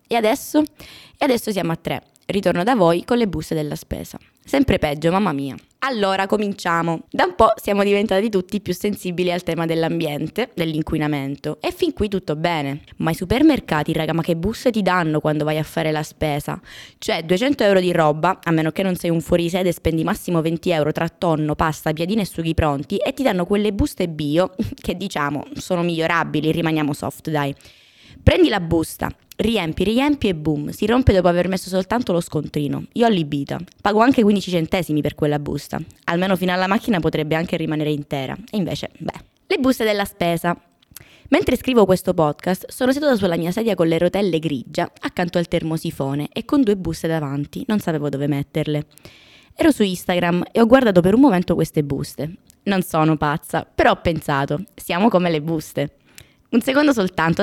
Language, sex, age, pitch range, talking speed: Italian, female, 20-39, 155-210 Hz, 185 wpm